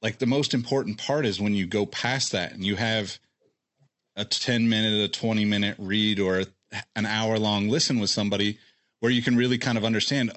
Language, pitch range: English, 105-125 Hz